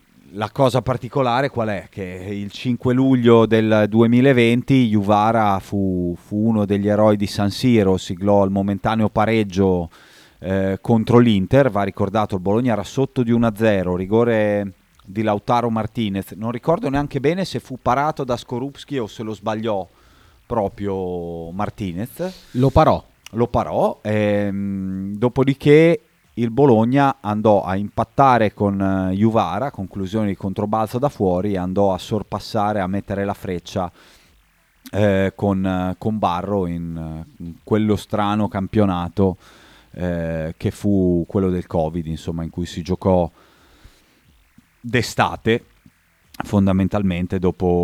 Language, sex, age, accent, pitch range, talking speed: Italian, male, 30-49, native, 95-115 Hz, 130 wpm